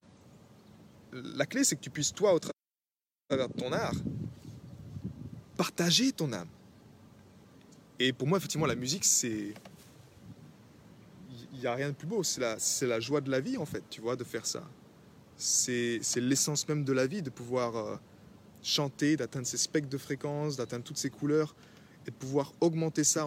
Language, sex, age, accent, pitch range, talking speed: French, male, 20-39, French, 125-160 Hz, 175 wpm